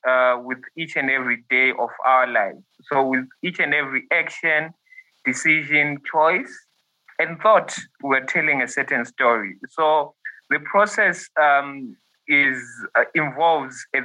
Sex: male